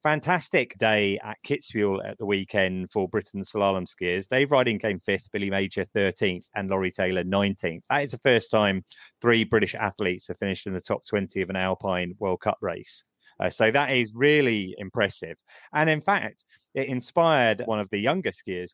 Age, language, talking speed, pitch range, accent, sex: 30-49, English, 185 wpm, 95-120 Hz, British, male